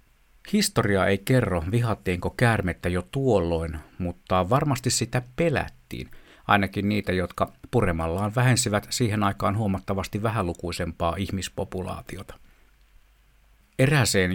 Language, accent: Finnish, native